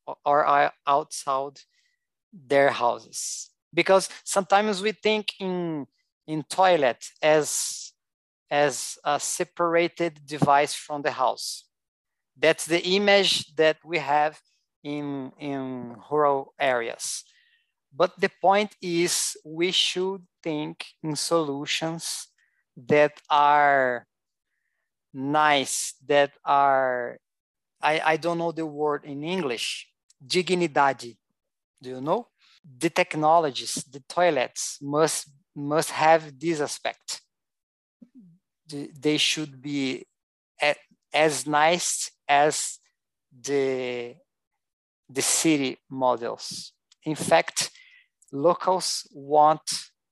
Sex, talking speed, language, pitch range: male, 95 wpm, English, 140-170 Hz